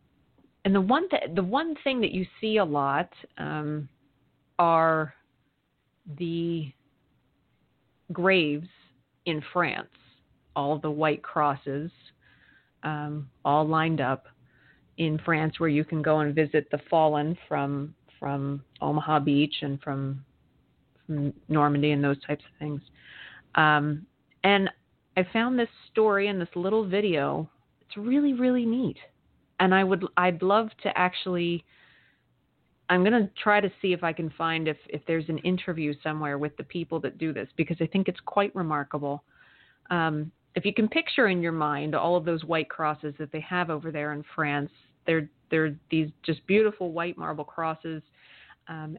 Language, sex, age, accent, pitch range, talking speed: English, female, 30-49, American, 150-185 Hz, 155 wpm